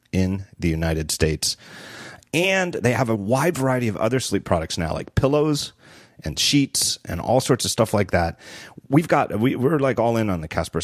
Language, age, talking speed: English, 40-59, 195 wpm